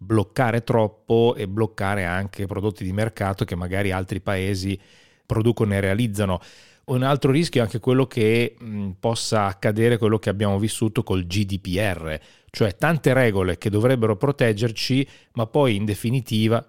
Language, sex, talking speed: Italian, male, 145 wpm